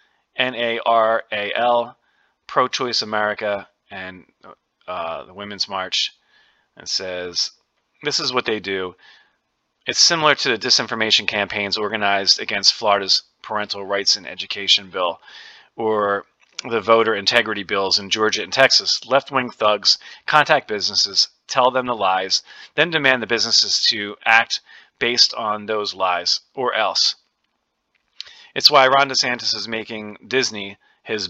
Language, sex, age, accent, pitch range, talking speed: English, male, 30-49, American, 100-125 Hz, 125 wpm